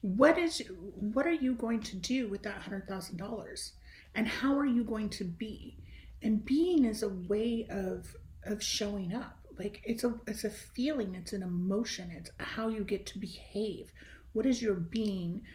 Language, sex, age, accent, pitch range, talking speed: English, female, 40-59, American, 185-220 Hz, 185 wpm